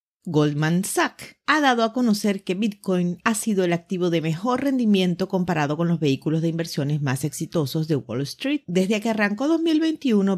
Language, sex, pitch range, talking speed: Spanish, female, 165-235 Hz, 175 wpm